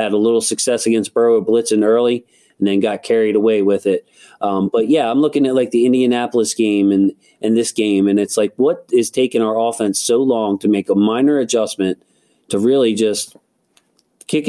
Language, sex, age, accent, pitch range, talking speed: English, male, 40-59, American, 105-120 Hz, 200 wpm